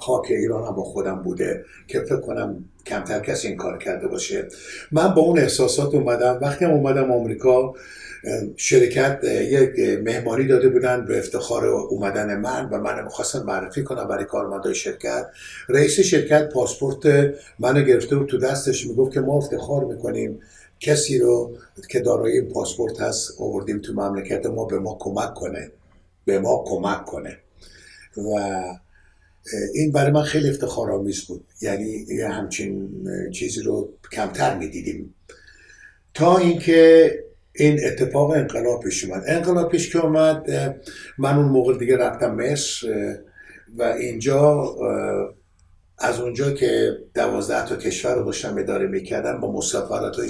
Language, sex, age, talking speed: Persian, male, 60-79, 140 wpm